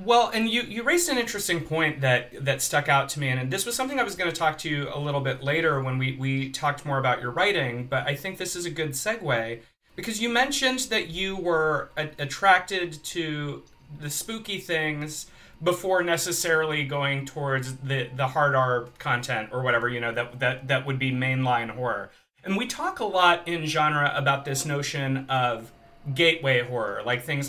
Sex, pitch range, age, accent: male, 135-185 Hz, 30-49, American